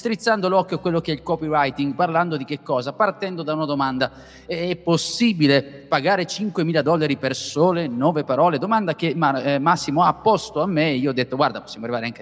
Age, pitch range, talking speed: 30-49, 130-175 Hz, 195 wpm